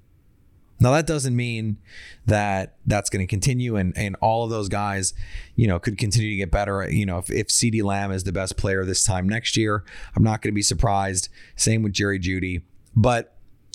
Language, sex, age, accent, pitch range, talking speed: English, male, 30-49, American, 95-120 Hz, 205 wpm